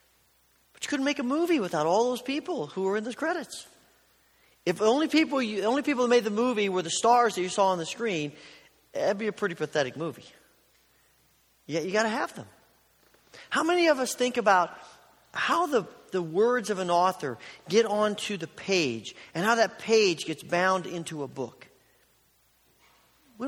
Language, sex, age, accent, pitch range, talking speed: English, male, 40-59, American, 150-220 Hz, 180 wpm